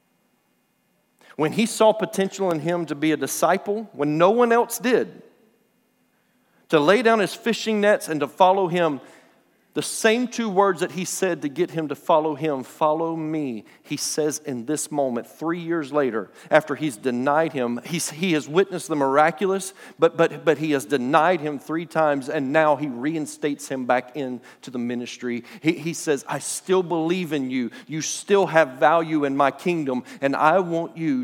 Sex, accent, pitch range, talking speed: male, American, 125-170 Hz, 180 wpm